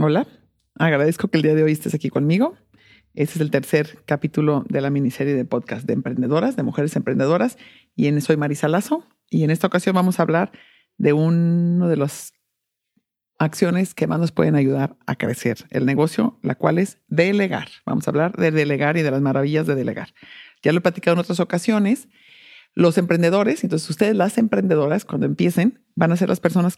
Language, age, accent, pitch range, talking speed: English, 50-69, Mexican, 145-190 Hz, 195 wpm